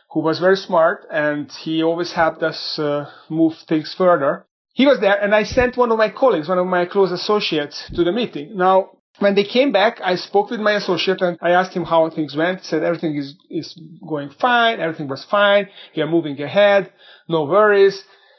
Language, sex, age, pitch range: English, male, 40-59, 165-210 Hz